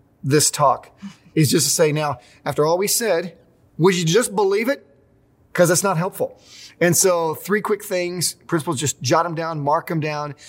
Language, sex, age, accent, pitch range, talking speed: English, male, 30-49, American, 135-175 Hz, 190 wpm